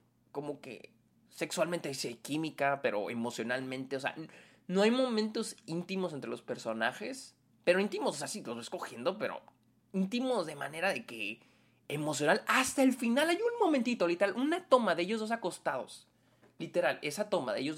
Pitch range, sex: 130-210 Hz, male